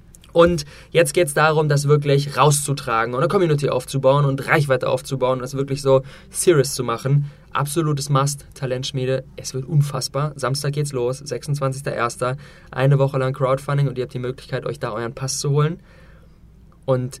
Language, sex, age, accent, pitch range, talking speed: German, male, 20-39, German, 130-160 Hz, 170 wpm